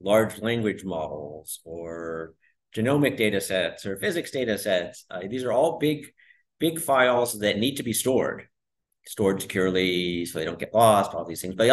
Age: 50-69